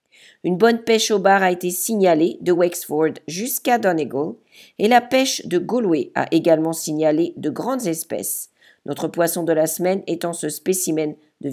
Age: 50-69